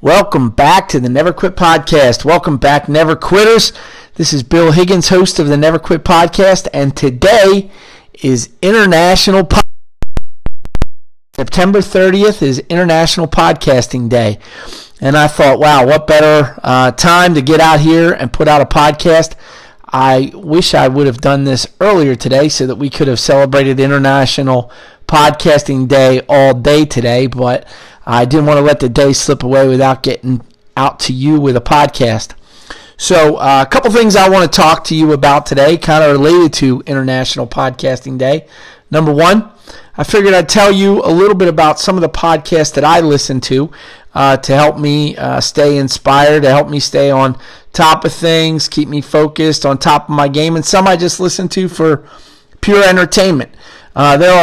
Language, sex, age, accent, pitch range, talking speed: English, male, 40-59, American, 135-170 Hz, 175 wpm